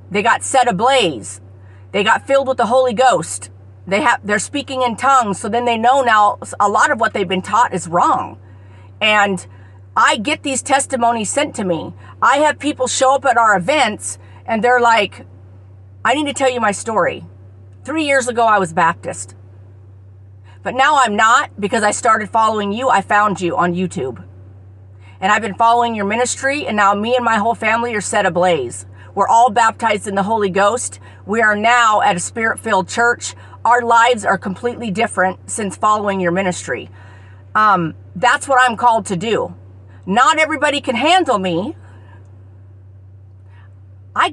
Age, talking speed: 40-59, 175 wpm